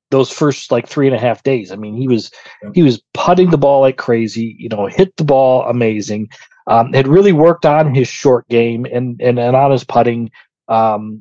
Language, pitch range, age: English, 115-140 Hz, 40-59